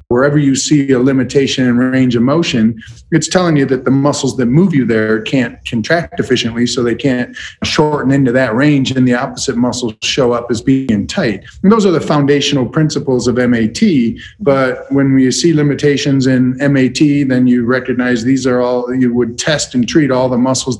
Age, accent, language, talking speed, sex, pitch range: 50-69, American, English, 195 wpm, male, 120-140 Hz